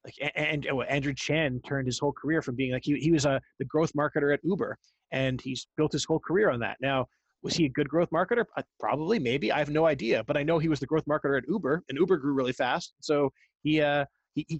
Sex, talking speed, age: male, 260 wpm, 30-49